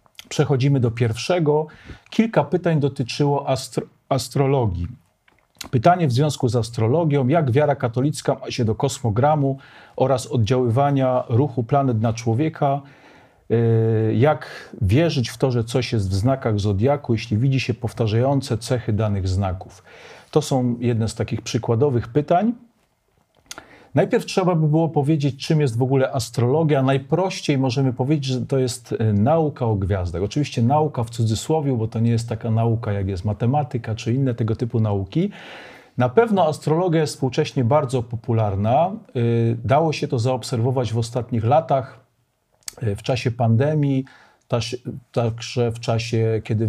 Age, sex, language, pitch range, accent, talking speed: 40-59, male, Polish, 115-145 Hz, native, 140 wpm